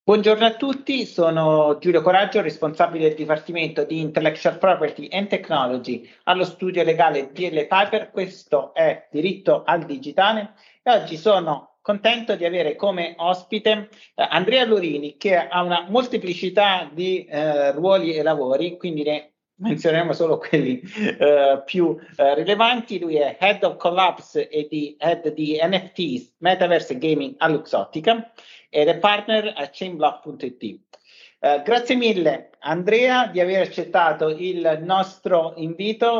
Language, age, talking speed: Italian, 50-69, 130 wpm